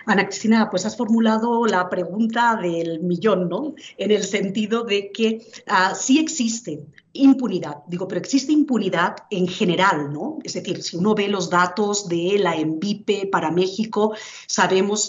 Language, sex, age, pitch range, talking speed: Spanish, female, 40-59, 180-230 Hz, 155 wpm